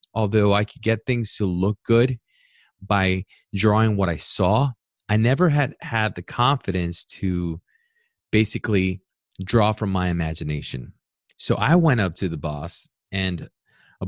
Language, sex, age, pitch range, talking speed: English, male, 20-39, 90-115 Hz, 145 wpm